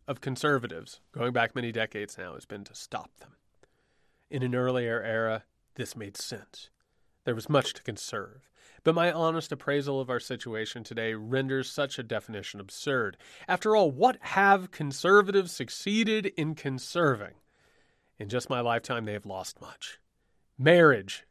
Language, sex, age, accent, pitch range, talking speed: English, male, 30-49, American, 115-160 Hz, 150 wpm